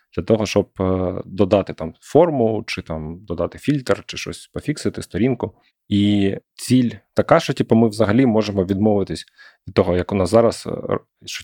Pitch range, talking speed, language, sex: 95-115 Hz, 155 wpm, Ukrainian, male